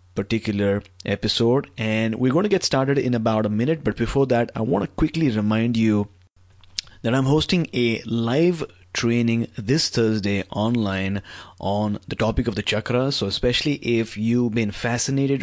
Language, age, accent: English, 30-49, Indian